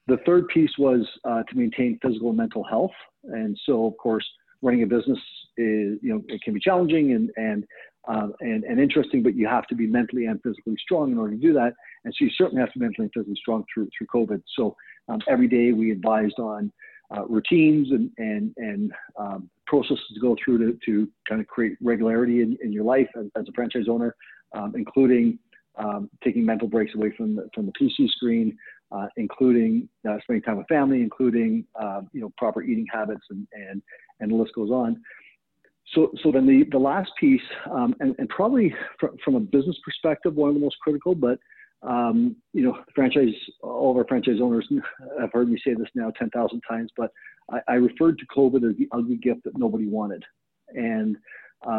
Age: 50-69